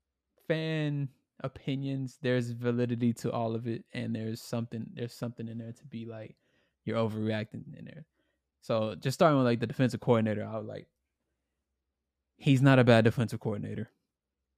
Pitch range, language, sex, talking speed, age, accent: 110-125 Hz, English, male, 160 wpm, 20-39, American